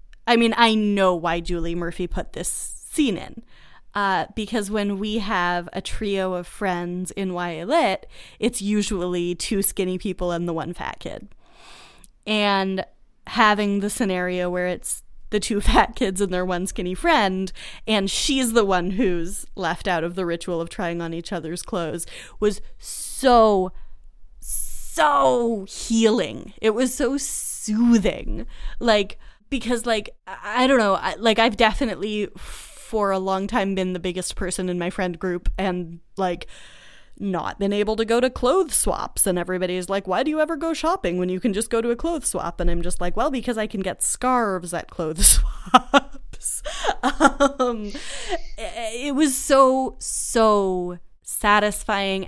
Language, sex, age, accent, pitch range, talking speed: English, female, 10-29, American, 180-230 Hz, 165 wpm